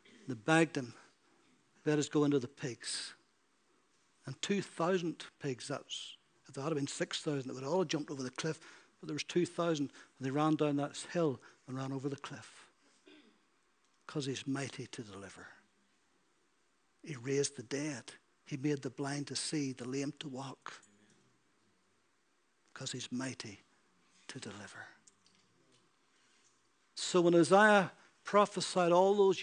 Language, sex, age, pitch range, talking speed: English, male, 60-79, 135-160 Hz, 145 wpm